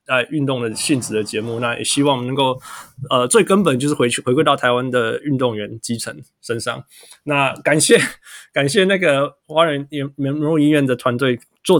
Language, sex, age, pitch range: Chinese, male, 20-39, 125-155 Hz